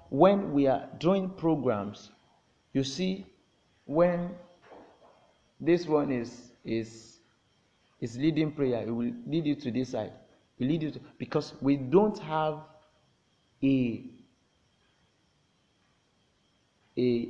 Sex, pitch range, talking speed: male, 125-175 Hz, 110 wpm